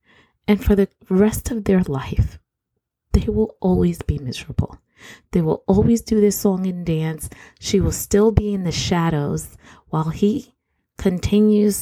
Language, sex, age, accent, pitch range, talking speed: English, female, 30-49, American, 160-220 Hz, 150 wpm